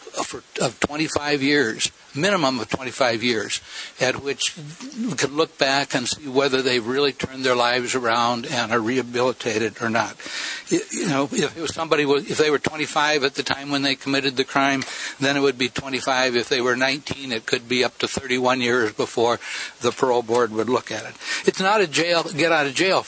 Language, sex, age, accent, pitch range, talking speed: English, male, 60-79, American, 125-155 Hz, 200 wpm